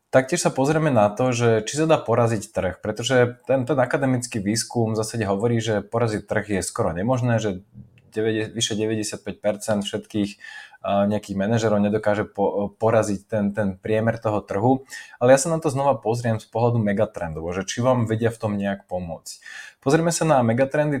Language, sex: Slovak, male